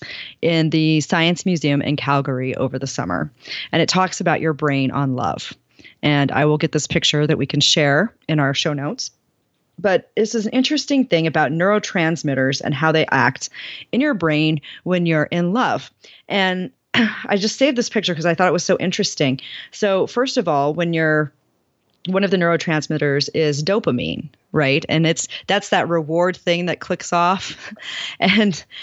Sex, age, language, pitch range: female, 30-49, English, 150-185 Hz